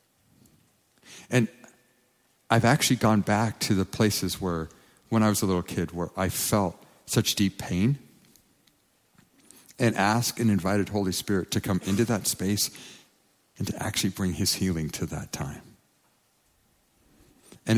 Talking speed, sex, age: 140 wpm, male, 50-69